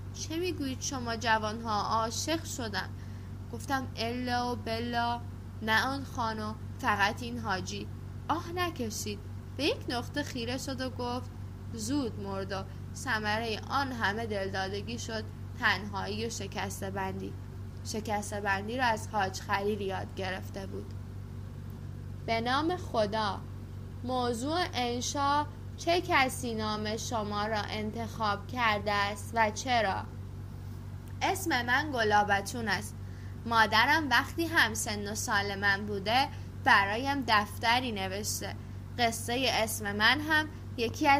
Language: Persian